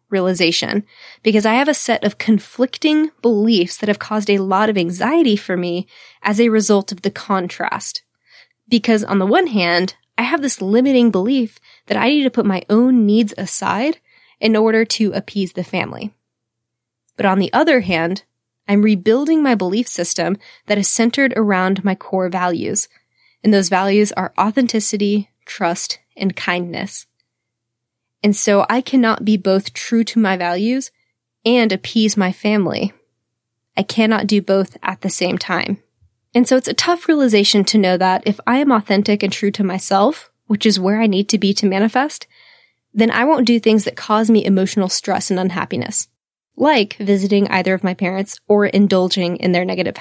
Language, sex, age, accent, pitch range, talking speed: English, female, 20-39, American, 190-230 Hz, 175 wpm